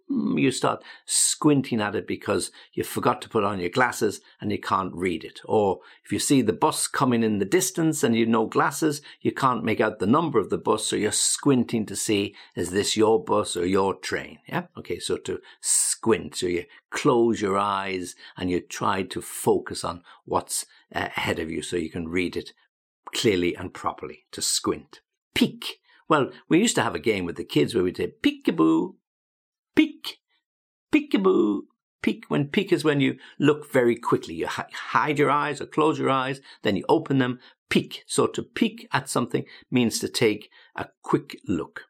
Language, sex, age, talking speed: English, male, 60-79, 195 wpm